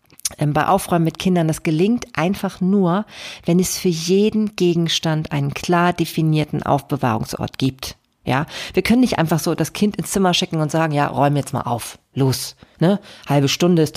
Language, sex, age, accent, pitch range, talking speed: German, female, 40-59, German, 140-180 Hz, 175 wpm